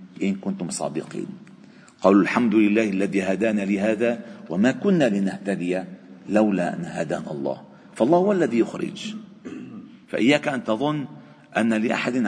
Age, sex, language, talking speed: 50-69, male, Arabic, 120 wpm